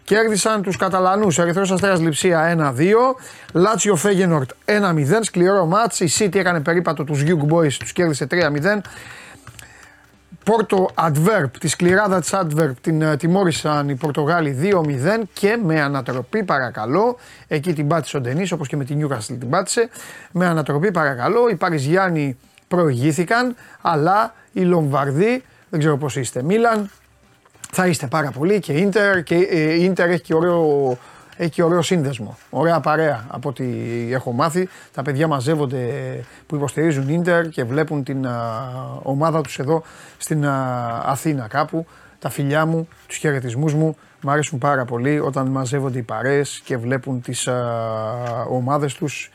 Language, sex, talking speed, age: Greek, male, 140 wpm, 30-49